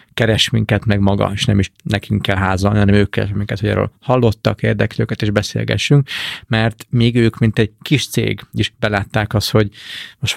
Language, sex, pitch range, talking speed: Hungarian, male, 100-120 Hz, 185 wpm